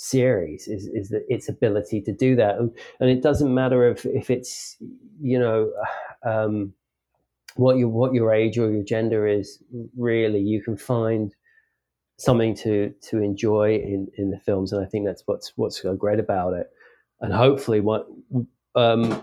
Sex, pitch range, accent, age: male, 105-125 Hz, British, 30-49